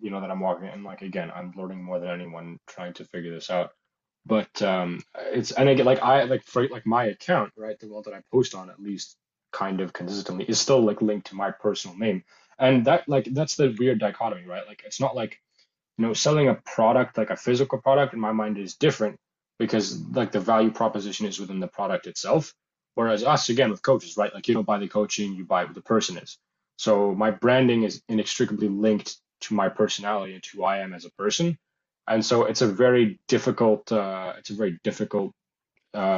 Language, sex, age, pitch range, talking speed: English, male, 20-39, 100-125 Hz, 220 wpm